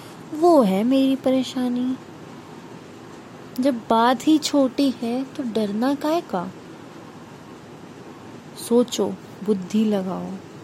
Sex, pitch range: female, 205-280 Hz